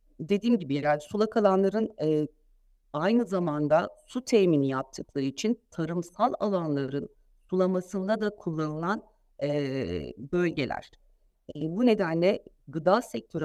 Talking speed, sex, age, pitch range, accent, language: 105 wpm, female, 50-69, 145-205 Hz, native, Turkish